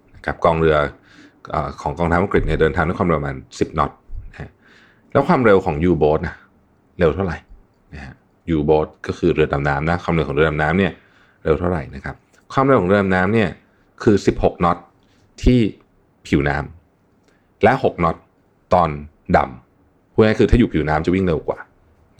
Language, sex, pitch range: Thai, male, 75-100 Hz